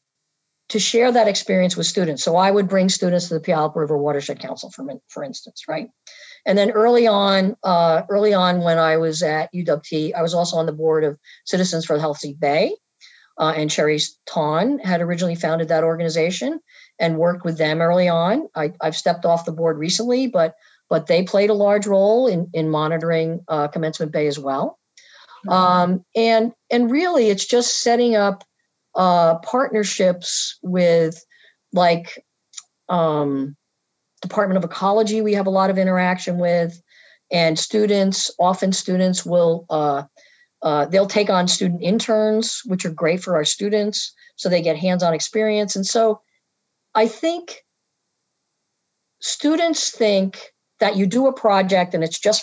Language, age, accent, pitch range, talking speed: English, 50-69, American, 165-215 Hz, 165 wpm